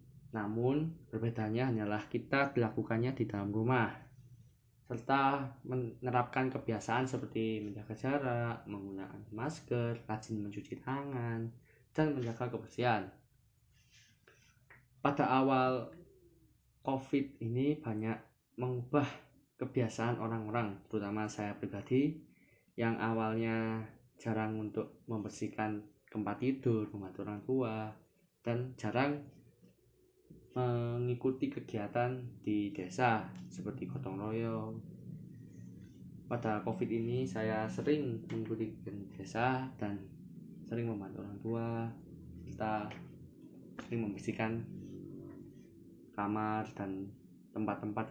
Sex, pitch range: male, 105-125 Hz